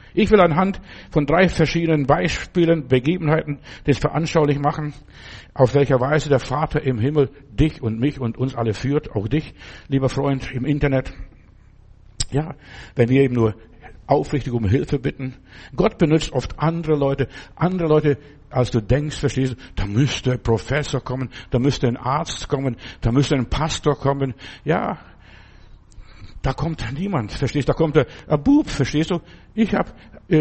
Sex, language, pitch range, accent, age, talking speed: male, German, 130-160 Hz, German, 60-79, 160 wpm